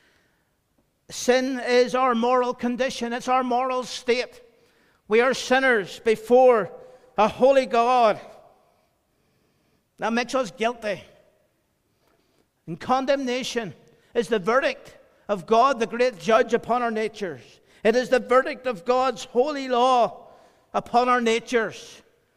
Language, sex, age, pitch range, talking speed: English, male, 50-69, 230-255 Hz, 120 wpm